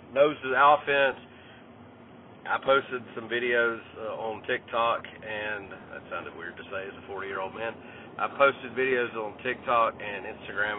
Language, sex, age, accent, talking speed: English, male, 40-59, American, 150 wpm